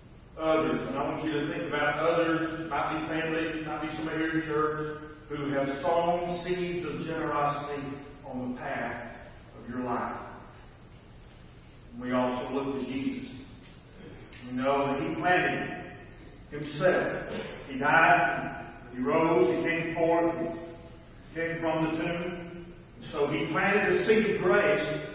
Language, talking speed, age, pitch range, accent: English, 150 wpm, 40-59, 145-185 Hz, American